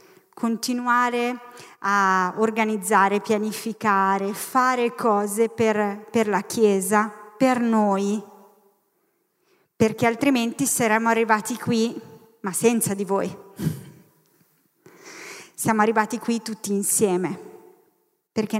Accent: native